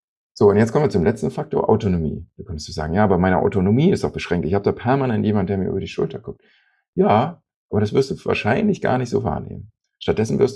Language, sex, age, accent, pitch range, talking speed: German, male, 40-59, German, 90-120 Hz, 245 wpm